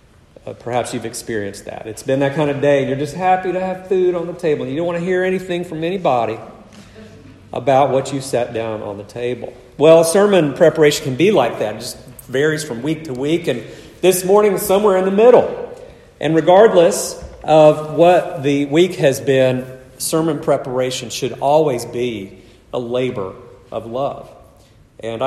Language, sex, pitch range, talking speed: English, male, 125-170 Hz, 180 wpm